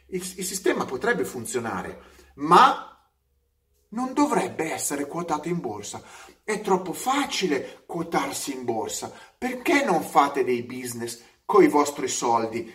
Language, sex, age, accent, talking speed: Italian, male, 30-49, native, 125 wpm